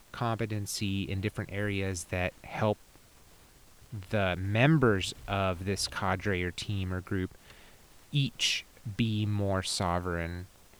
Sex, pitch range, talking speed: male, 95-115 Hz, 105 wpm